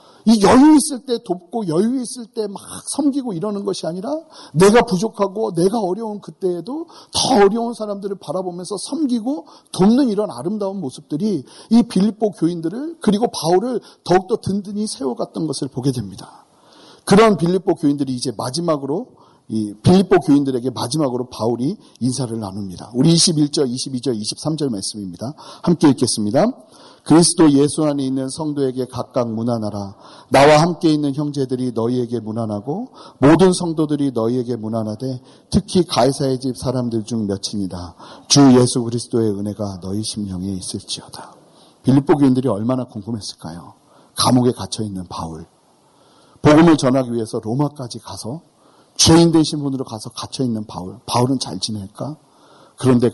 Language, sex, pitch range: Korean, male, 115-185 Hz